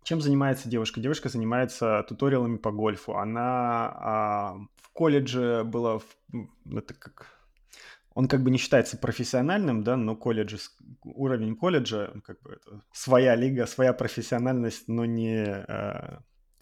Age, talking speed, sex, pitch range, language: 20-39, 125 wpm, male, 115-145 Hz, Russian